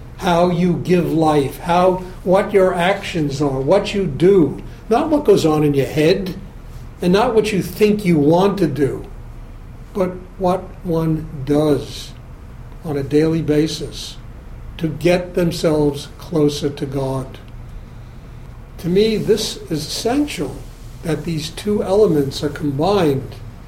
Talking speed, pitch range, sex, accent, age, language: 135 wpm, 140-175 Hz, male, American, 60-79, English